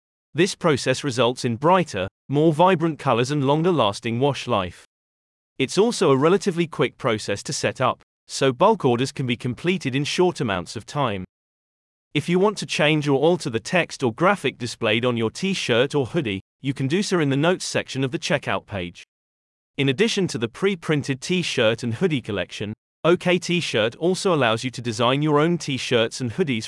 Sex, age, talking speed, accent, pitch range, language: male, 30-49, 185 wpm, British, 115-165 Hz, English